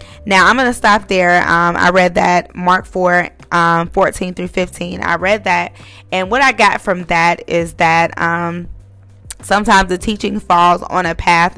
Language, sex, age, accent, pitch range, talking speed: English, female, 20-39, American, 170-205 Hz, 180 wpm